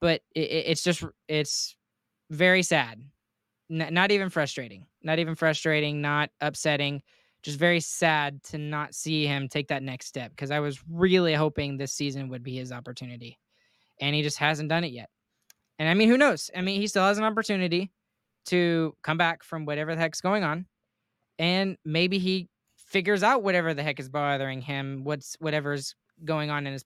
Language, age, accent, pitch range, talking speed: English, 10-29, American, 140-175 Hz, 180 wpm